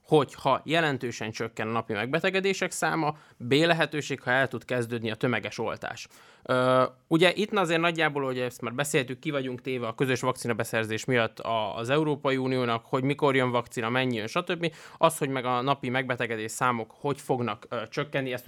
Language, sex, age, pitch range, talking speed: Hungarian, male, 20-39, 125-160 Hz, 175 wpm